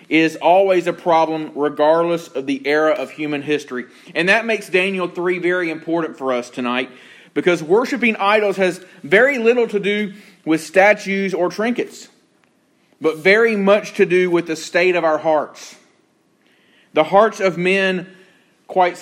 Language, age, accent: English, 30-49, American